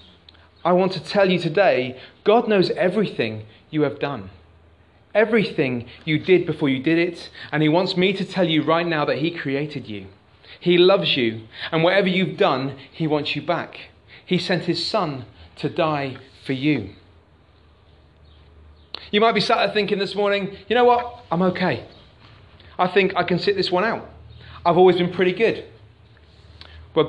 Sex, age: male, 30-49